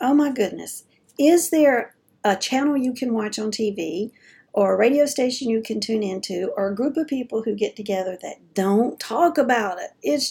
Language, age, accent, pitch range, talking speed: English, 50-69, American, 200-255 Hz, 200 wpm